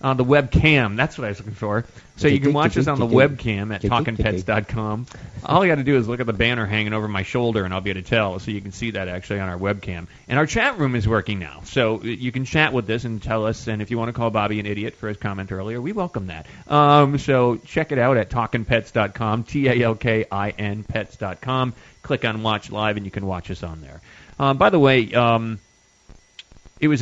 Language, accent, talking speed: English, American, 240 wpm